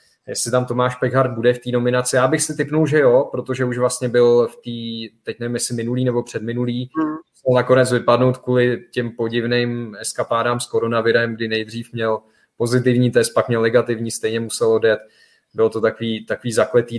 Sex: male